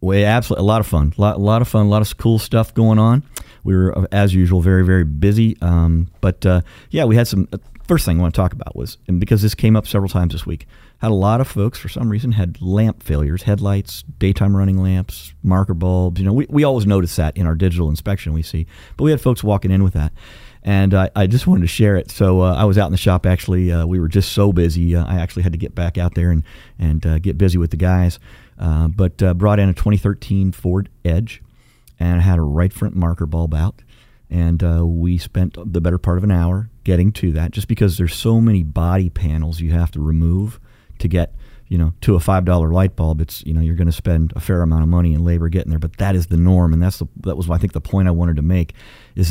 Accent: American